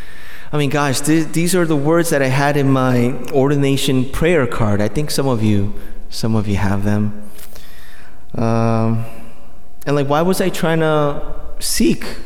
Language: English